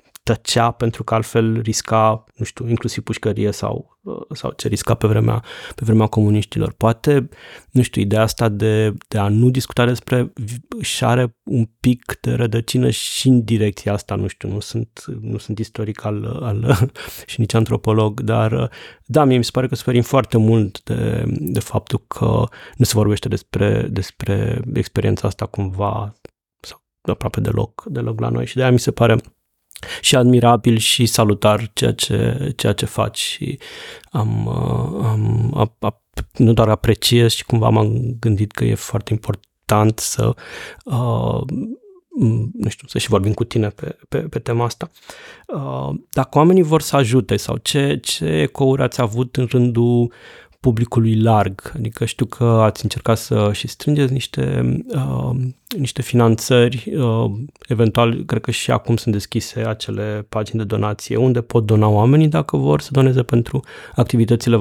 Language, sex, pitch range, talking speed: Romanian, male, 110-125 Hz, 155 wpm